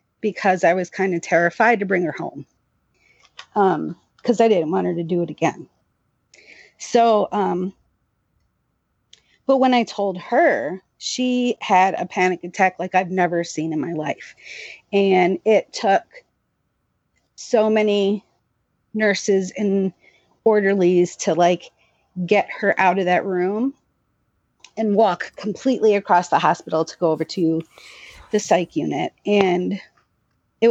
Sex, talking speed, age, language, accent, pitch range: female, 140 wpm, 40-59, English, American, 180-220 Hz